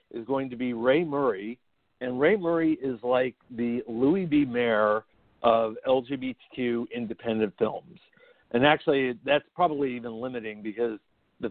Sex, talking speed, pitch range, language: male, 140 wpm, 110-130 Hz, English